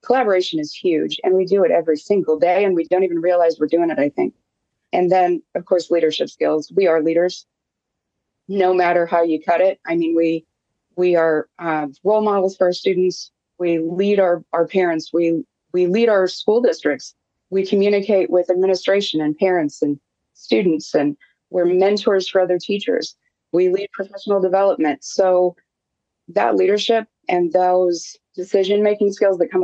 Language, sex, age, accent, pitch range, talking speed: English, female, 30-49, American, 165-195 Hz, 170 wpm